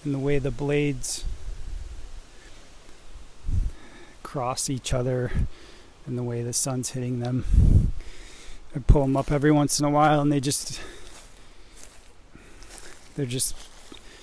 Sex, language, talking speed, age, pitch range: male, English, 120 wpm, 20-39, 115-145 Hz